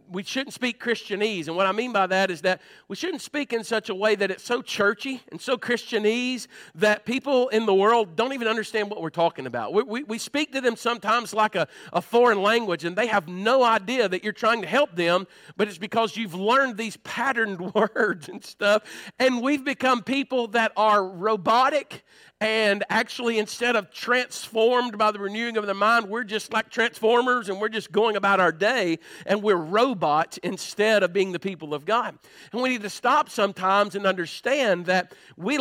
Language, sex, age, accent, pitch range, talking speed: English, male, 50-69, American, 200-245 Hz, 200 wpm